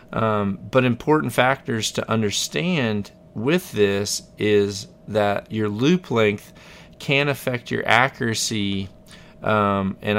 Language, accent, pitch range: English, American, 100-125 Hz